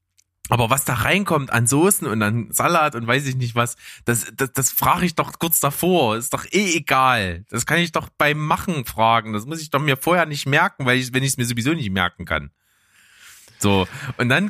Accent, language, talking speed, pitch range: German, German, 225 wpm, 105-175 Hz